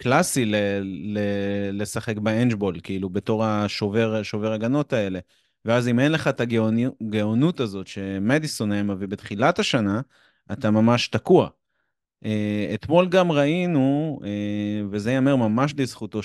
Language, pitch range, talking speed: Hebrew, 100-120 Hz, 110 wpm